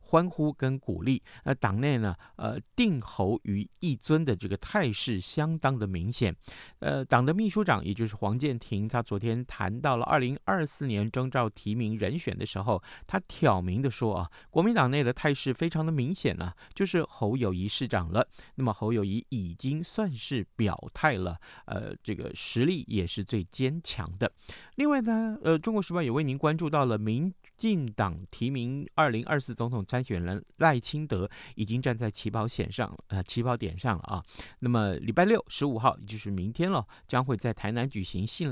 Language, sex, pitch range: Chinese, male, 100-140 Hz